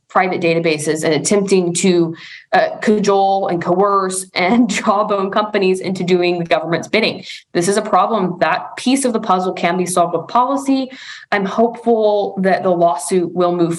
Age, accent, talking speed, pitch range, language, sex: 20-39, American, 165 wpm, 170-195 Hz, English, female